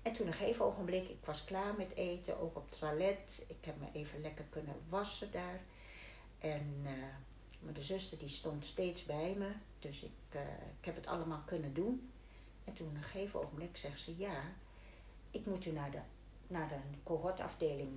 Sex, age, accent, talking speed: female, 60-79, Dutch, 185 wpm